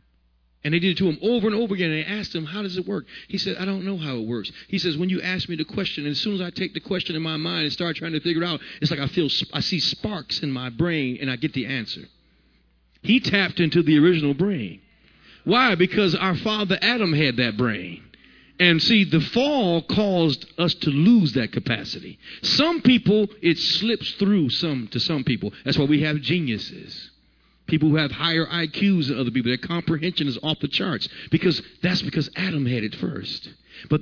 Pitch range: 125-175 Hz